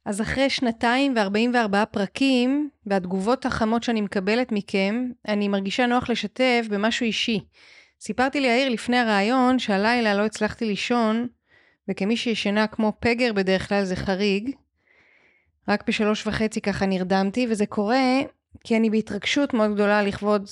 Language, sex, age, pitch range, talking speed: Hebrew, female, 20-39, 195-240 Hz, 135 wpm